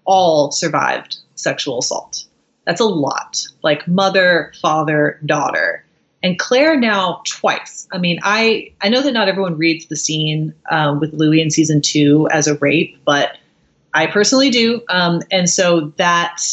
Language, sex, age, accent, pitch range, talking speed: English, female, 30-49, American, 155-195 Hz, 155 wpm